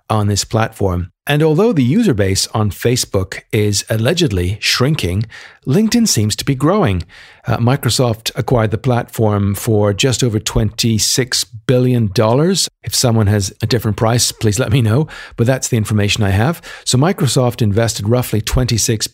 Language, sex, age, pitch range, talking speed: English, male, 50-69, 105-130 Hz, 155 wpm